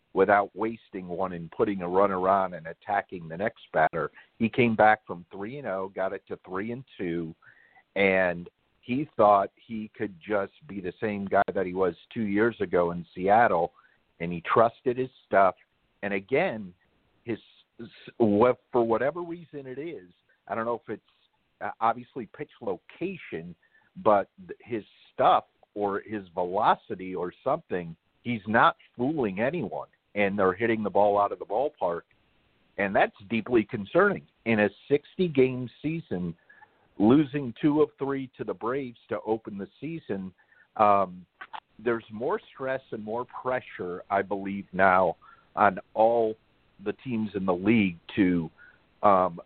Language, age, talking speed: English, 50-69, 150 wpm